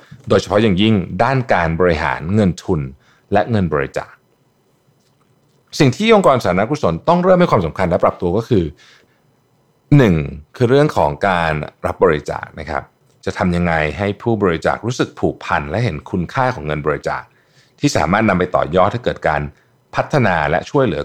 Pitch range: 80-115 Hz